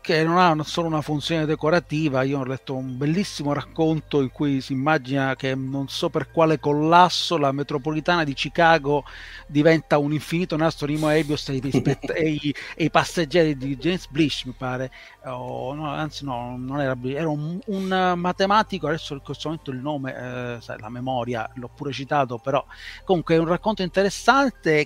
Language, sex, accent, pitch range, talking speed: Italian, male, native, 140-175 Hz, 165 wpm